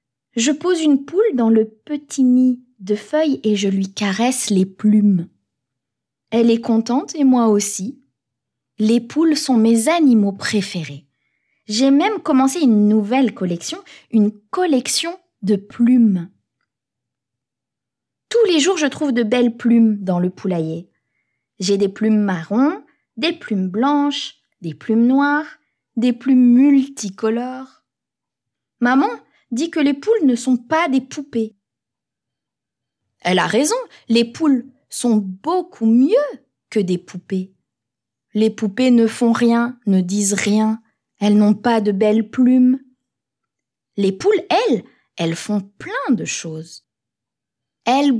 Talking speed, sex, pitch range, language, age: 130 wpm, female, 200-270 Hz, French, 20-39